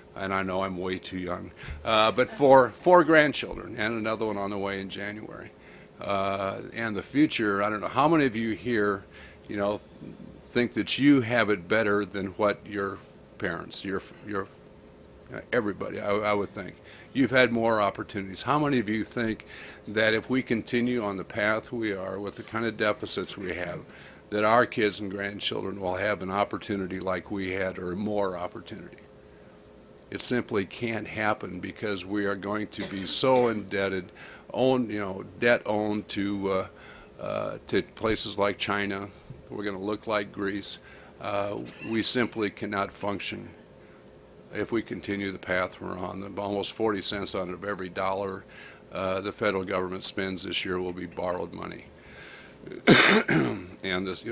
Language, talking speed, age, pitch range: English, 170 wpm, 50-69, 95-110 Hz